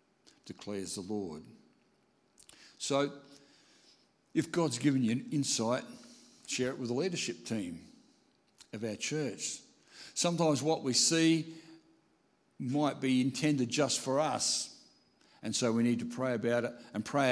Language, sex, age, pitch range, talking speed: English, male, 60-79, 105-140 Hz, 135 wpm